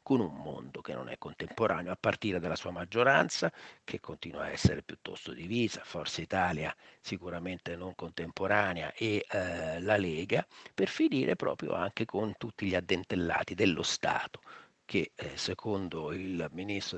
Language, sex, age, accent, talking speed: Italian, male, 50-69, native, 150 wpm